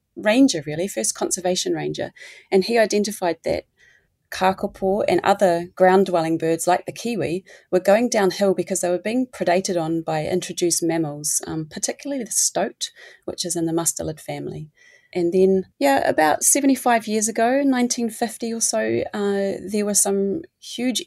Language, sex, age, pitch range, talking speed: English, female, 30-49, 175-225 Hz, 155 wpm